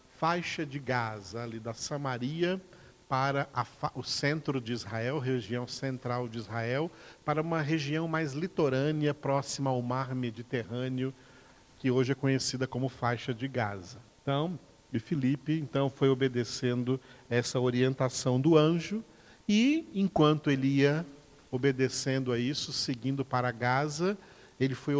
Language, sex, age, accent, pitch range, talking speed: Portuguese, male, 50-69, Brazilian, 125-150 Hz, 135 wpm